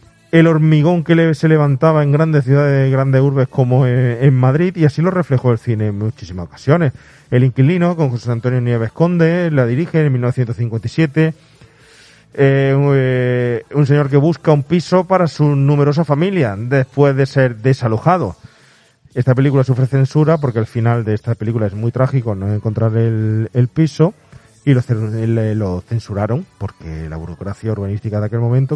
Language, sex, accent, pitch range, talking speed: Spanish, male, Spanish, 120-165 Hz, 160 wpm